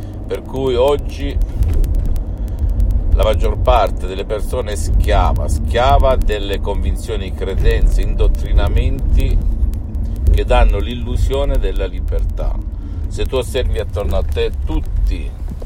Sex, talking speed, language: male, 105 wpm, Italian